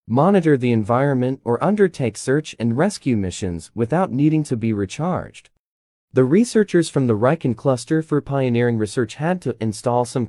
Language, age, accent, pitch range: Chinese, 30-49, American, 105-155 Hz